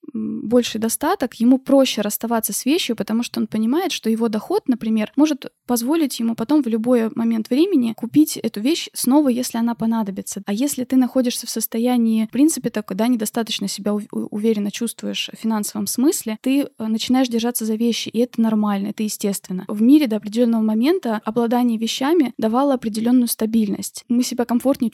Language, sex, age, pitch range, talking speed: Russian, female, 20-39, 220-255 Hz, 165 wpm